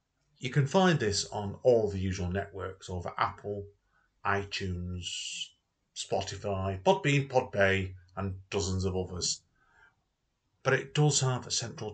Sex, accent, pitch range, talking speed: male, British, 95-125 Hz, 125 wpm